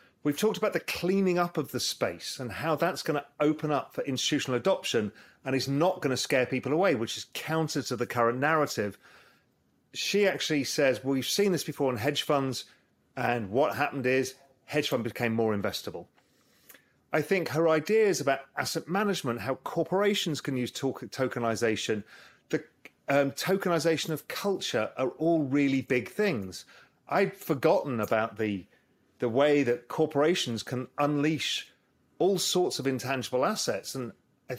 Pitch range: 125-170 Hz